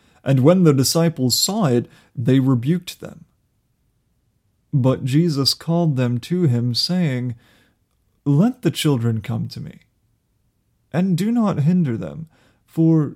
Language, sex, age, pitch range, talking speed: English, male, 30-49, 115-155 Hz, 130 wpm